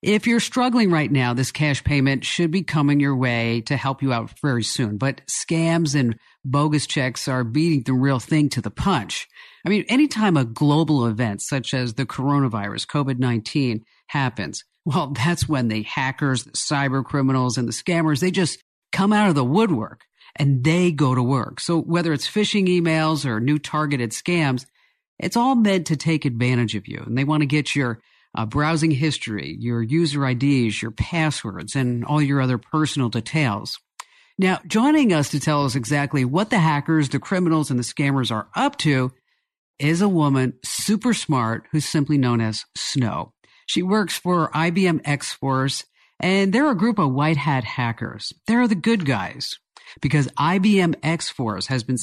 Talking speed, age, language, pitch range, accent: 175 wpm, 50-69, English, 125-165 Hz, American